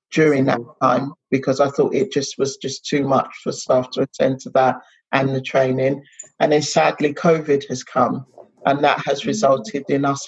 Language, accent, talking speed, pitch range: English, British, 195 wpm, 130-150 Hz